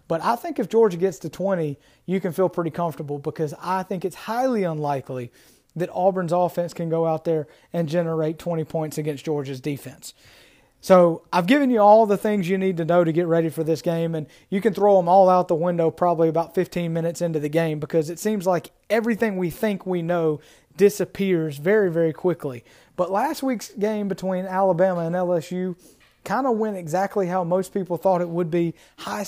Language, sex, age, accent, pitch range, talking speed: English, male, 30-49, American, 165-195 Hz, 205 wpm